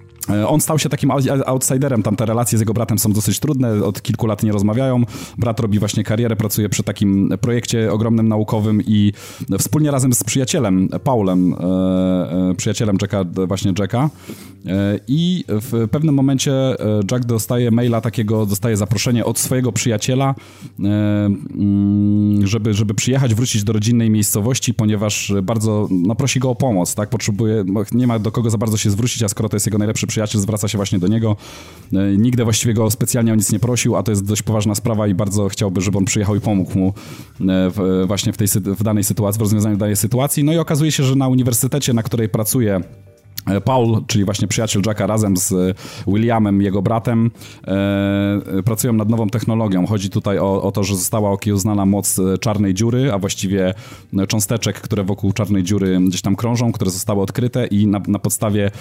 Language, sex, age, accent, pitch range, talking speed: Polish, male, 30-49, native, 100-115 Hz, 175 wpm